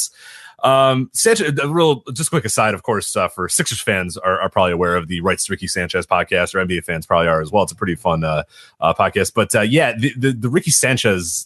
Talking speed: 240 wpm